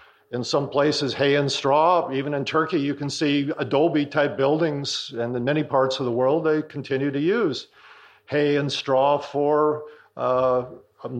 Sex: male